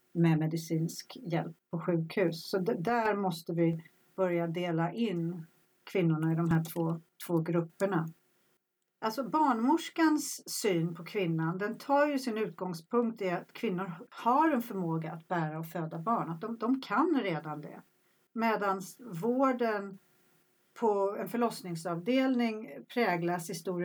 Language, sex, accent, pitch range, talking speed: Swedish, female, native, 165-220 Hz, 135 wpm